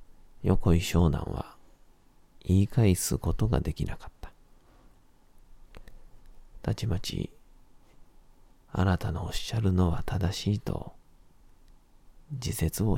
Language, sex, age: Japanese, male, 40-59